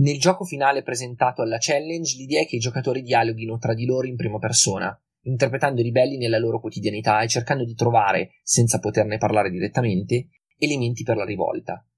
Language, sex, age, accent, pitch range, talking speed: Italian, male, 20-39, native, 110-130 Hz, 180 wpm